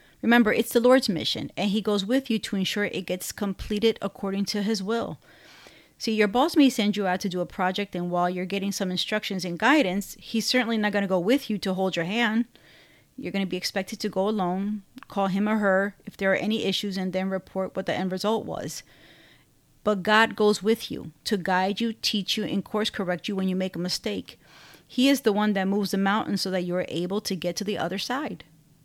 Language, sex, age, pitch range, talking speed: English, female, 30-49, 180-210 Hz, 235 wpm